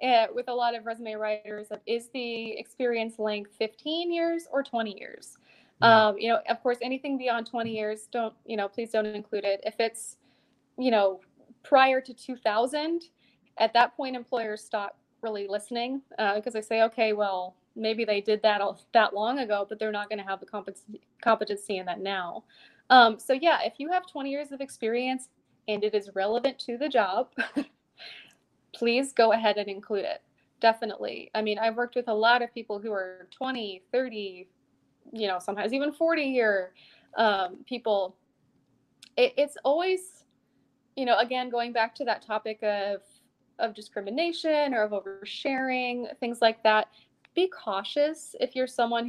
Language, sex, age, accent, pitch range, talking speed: English, female, 20-39, American, 210-255 Hz, 175 wpm